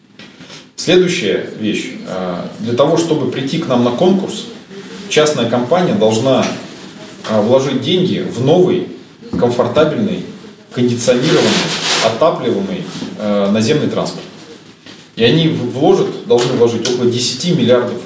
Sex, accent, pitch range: male, native, 120-180 Hz